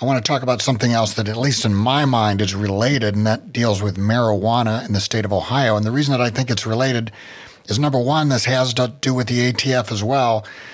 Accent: American